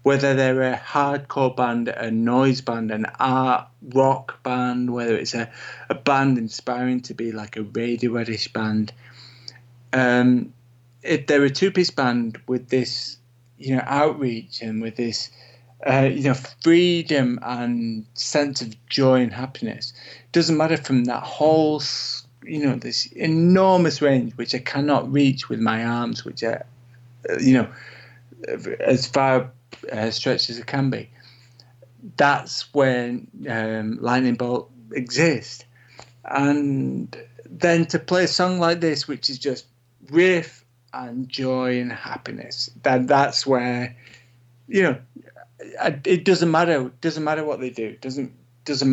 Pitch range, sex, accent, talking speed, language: 120-140 Hz, male, British, 140 wpm, English